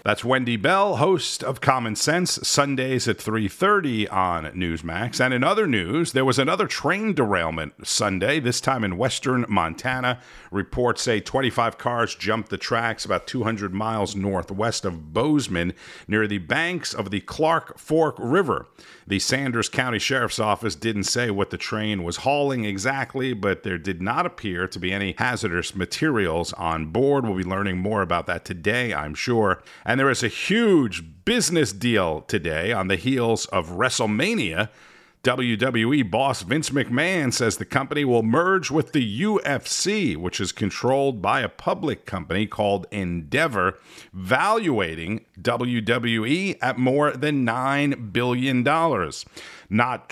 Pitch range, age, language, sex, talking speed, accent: 100-135 Hz, 50-69, English, male, 150 wpm, American